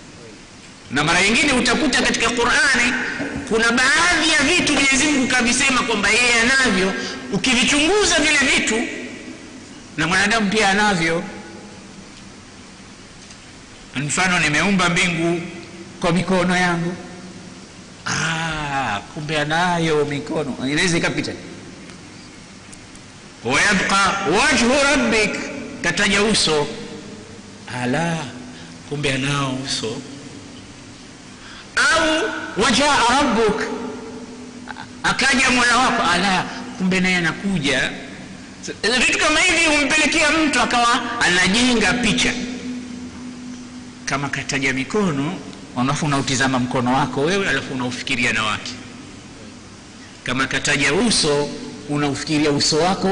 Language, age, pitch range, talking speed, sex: Swahili, 60-79, 155-240 Hz, 90 wpm, male